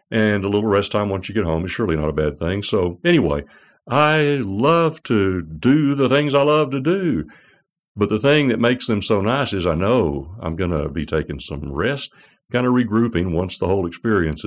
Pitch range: 85-120 Hz